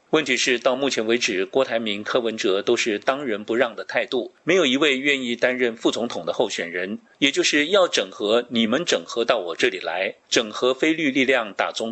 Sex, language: male, Chinese